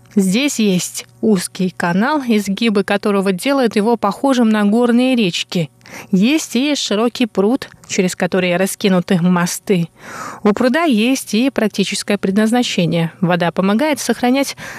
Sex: female